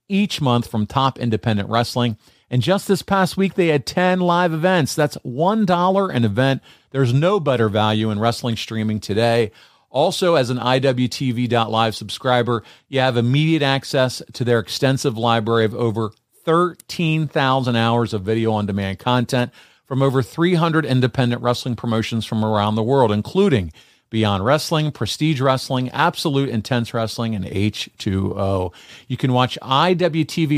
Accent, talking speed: American, 145 wpm